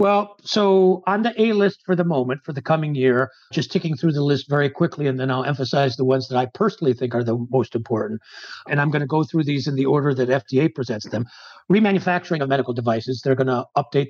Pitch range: 130-150 Hz